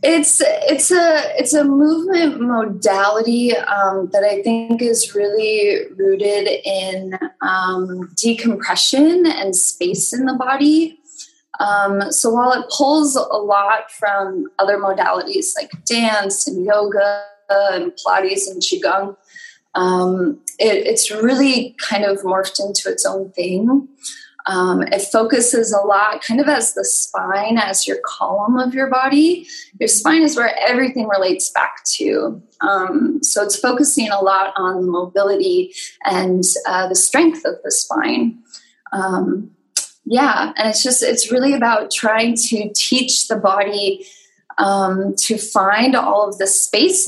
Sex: female